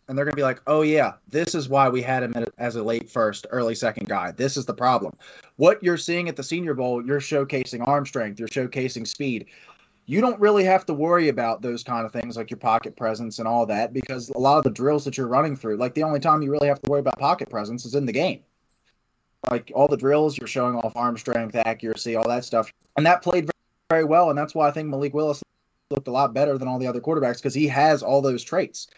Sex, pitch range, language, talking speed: male, 120-150 Hz, English, 255 wpm